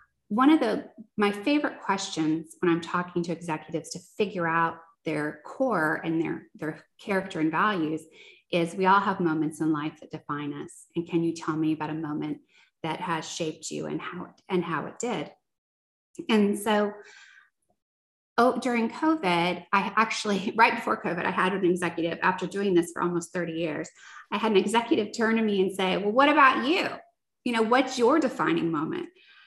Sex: female